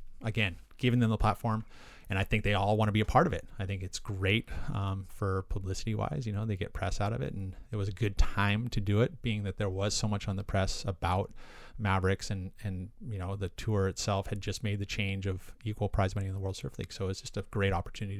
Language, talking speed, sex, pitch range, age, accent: English, 265 wpm, male, 95-110 Hz, 30-49, American